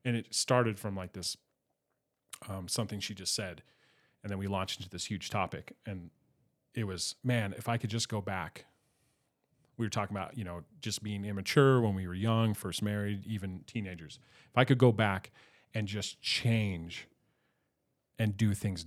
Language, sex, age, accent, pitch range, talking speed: English, male, 30-49, American, 100-120 Hz, 180 wpm